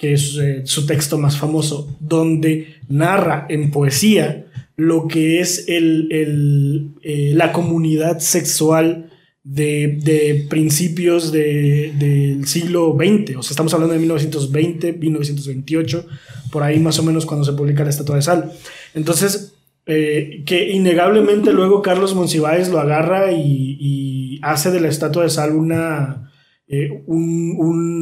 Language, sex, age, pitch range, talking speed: Spanish, male, 20-39, 145-170 Hz, 145 wpm